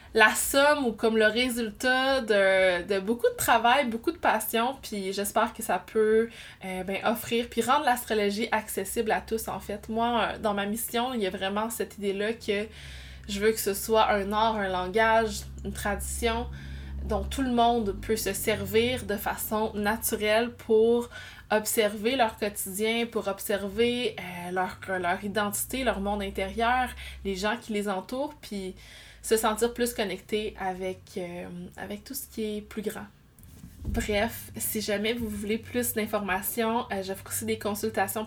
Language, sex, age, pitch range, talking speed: French, female, 20-39, 185-225 Hz, 160 wpm